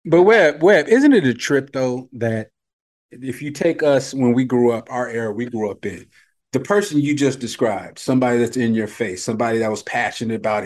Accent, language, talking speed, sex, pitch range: American, English, 215 wpm, male, 115-145 Hz